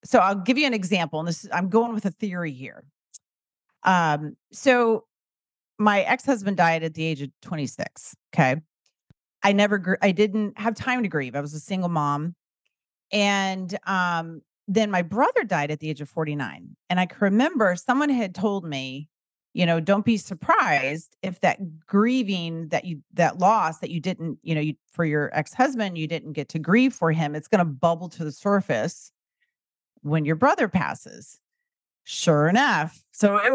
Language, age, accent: English, 40-59, American